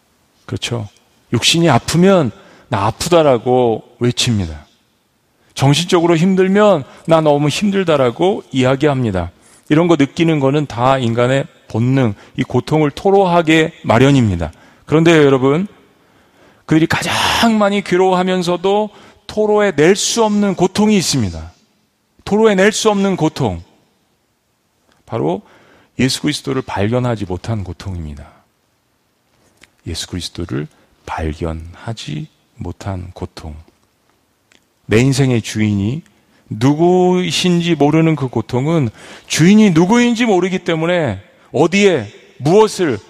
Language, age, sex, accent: Korean, 40-59, male, native